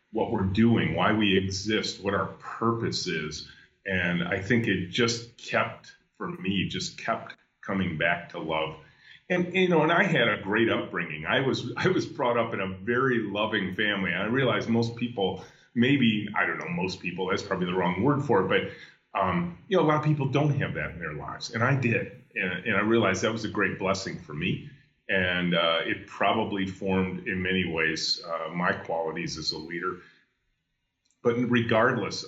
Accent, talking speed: American, 195 wpm